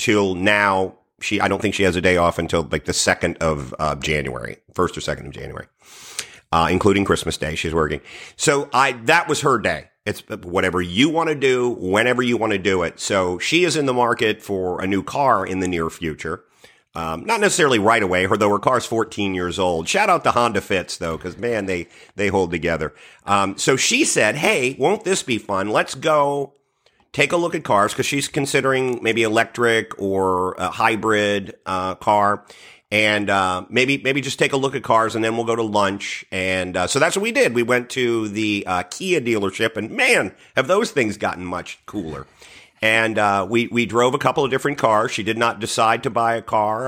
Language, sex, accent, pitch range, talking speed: English, male, American, 95-120 Hz, 215 wpm